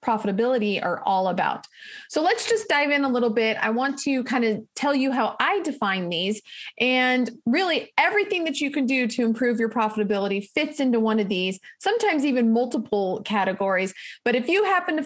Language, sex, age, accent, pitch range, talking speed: English, female, 30-49, American, 215-280 Hz, 190 wpm